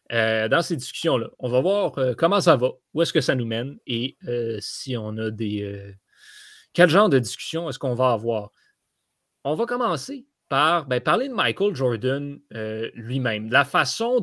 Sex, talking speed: male, 190 wpm